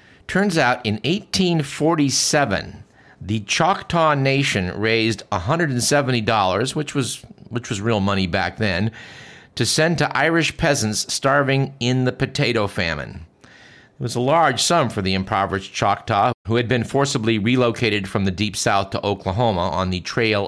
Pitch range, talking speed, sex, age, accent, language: 100-130 Hz, 145 wpm, male, 50-69, American, English